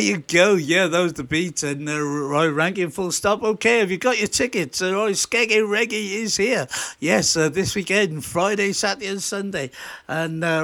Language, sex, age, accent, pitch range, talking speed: English, male, 60-79, British, 170-215 Hz, 205 wpm